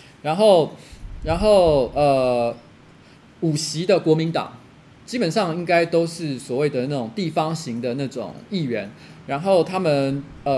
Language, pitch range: Chinese, 135-185 Hz